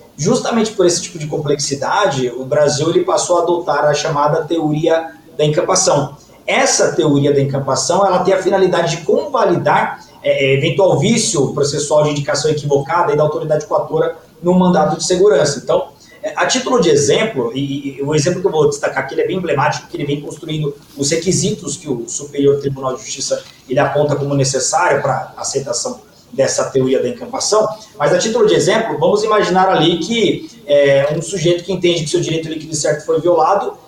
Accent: Brazilian